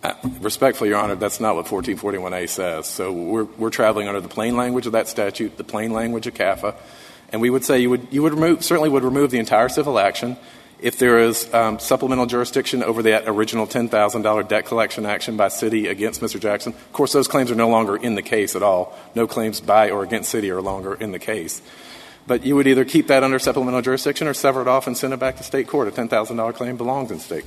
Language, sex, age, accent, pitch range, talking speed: English, male, 40-59, American, 110-130 Hz, 235 wpm